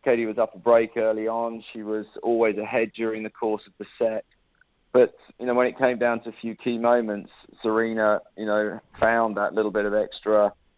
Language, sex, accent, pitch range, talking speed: English, male, British, 105-120 Hz, 210 wpm